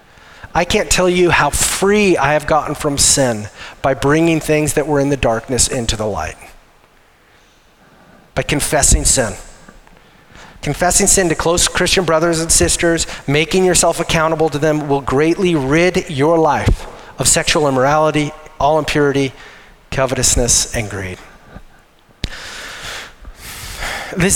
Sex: male